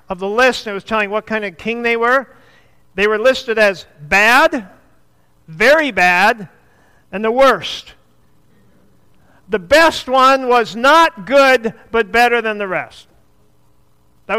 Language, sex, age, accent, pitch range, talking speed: English, male, 50-69, American, 145-225 Hz, 145 wpm